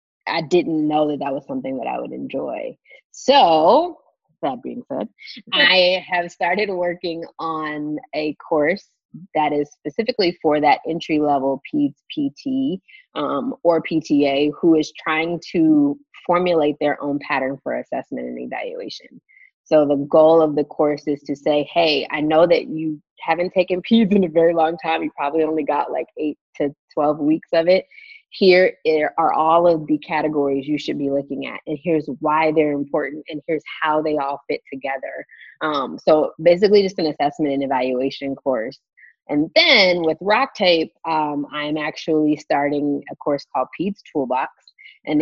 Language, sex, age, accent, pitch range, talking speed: English, female, 20-39, American, 150-175 Hz, 165 wpm